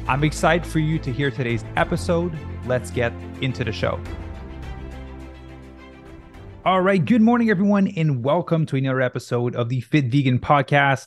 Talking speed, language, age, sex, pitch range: 150 wpm, English, 20-39, male, 115-135 Hz